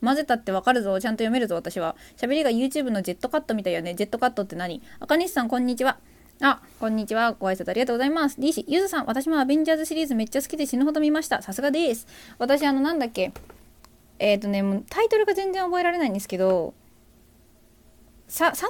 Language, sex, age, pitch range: Japanese, female, 20-39, 205-295 Hz